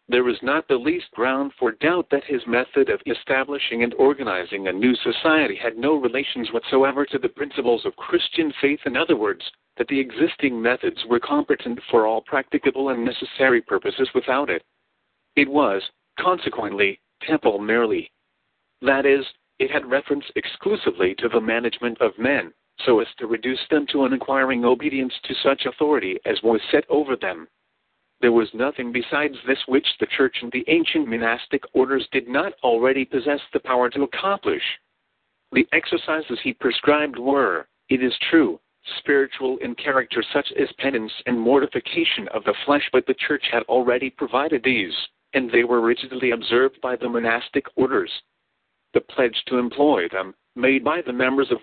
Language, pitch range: English, 120-150 Hz